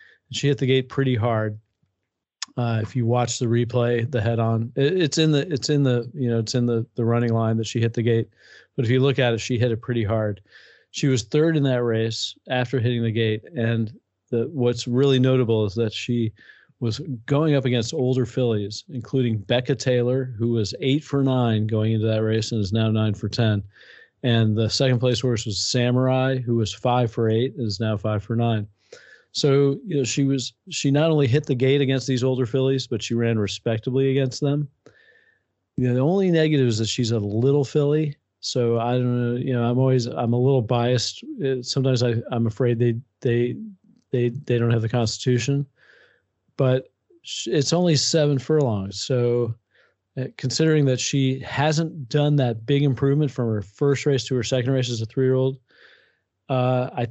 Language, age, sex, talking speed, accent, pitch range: English, 40-59, male, 200 wpm, American, 115-135 Hz